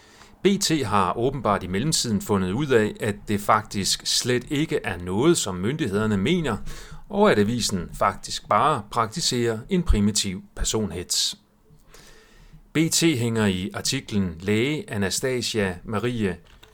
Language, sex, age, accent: Danish, male, 40-59, native